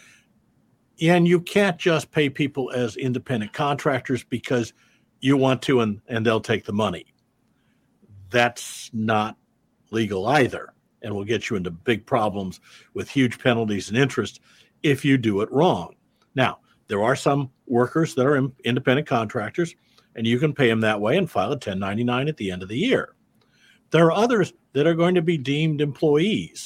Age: 50-69